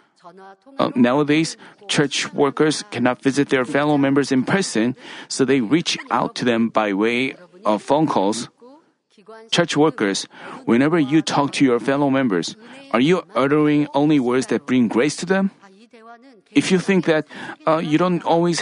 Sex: male